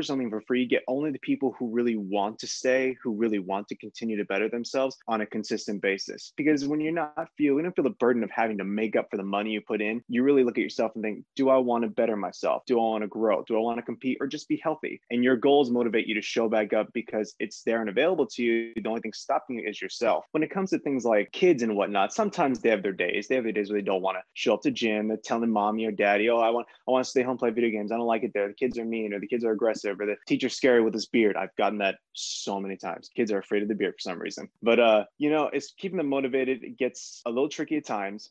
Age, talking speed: 20-39, 300 wpm